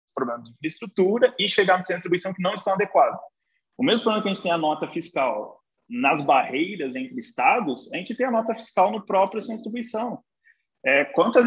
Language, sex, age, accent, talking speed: Portuguese, male, 20-39, Brazilian, 210 wpm